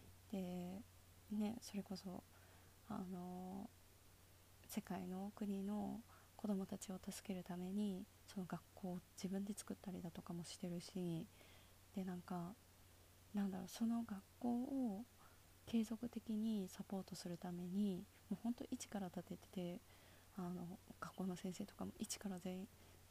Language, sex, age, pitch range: Japanese, female, 20-39, 175-210 Hz